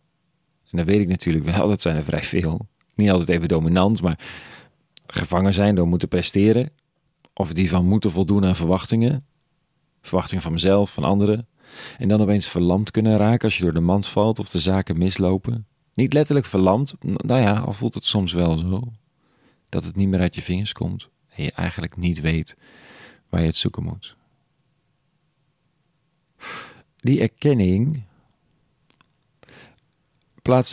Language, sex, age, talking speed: Dutch, male, 40-59, 160 wpm